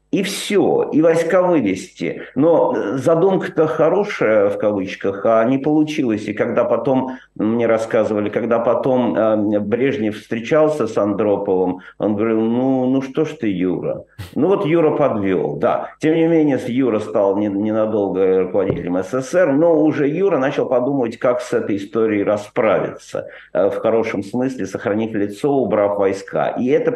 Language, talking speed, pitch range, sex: Russian, 140 wpm, 100-145 Hz, male